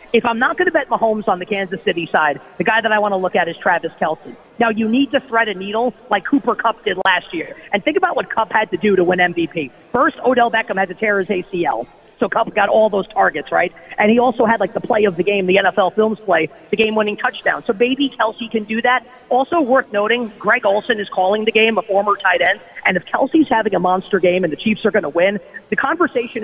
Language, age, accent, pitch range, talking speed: English, 40-59, American, 190-235 Hz, 260 wpm